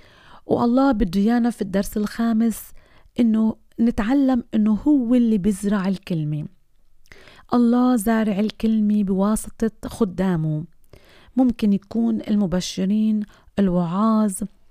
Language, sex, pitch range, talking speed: Arabic, female, 200-235 Hz, 85 wpm